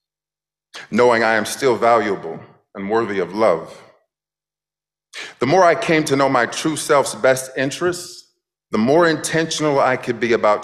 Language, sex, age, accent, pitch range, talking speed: English, male, 40-59, American, 110-155 Hz, 150 wpm